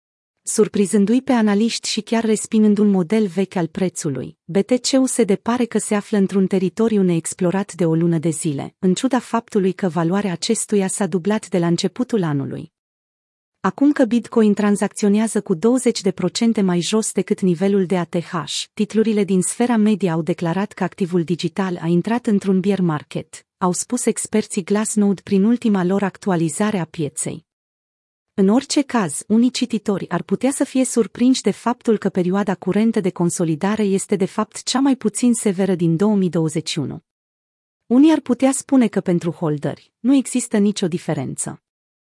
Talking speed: 155 wpm